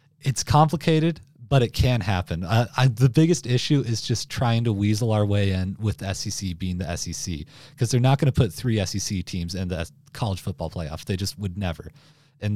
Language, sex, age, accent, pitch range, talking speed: English, male, 40-59, American, 100-140 Hz, 205 wpm